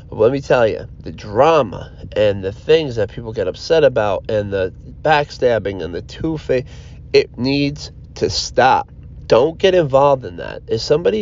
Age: 30-49